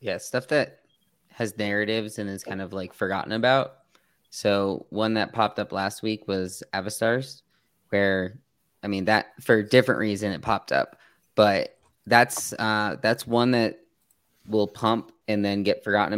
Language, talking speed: English, 165 wpm